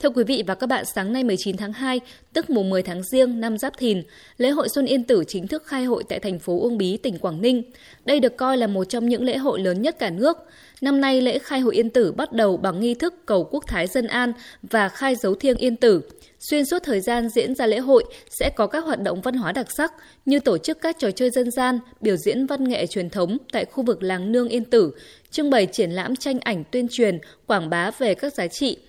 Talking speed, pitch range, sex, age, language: 260 wpm, 200-260 Hz, female, 20-39, Vietnamese